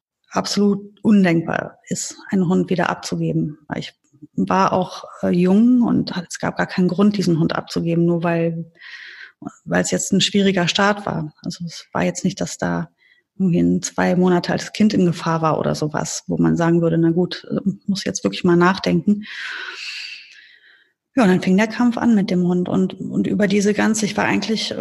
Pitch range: 180-215 Hz